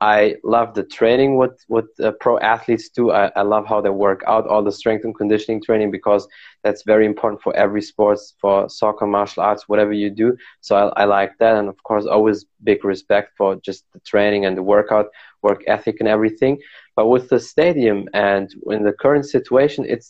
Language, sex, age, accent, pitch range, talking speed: German, male, 20-39, German, 105-120 Hz, 205 wpm